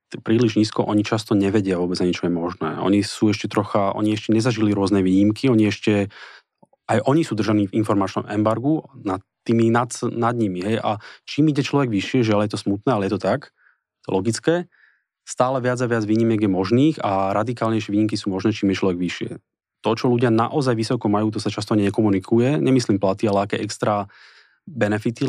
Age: 30-49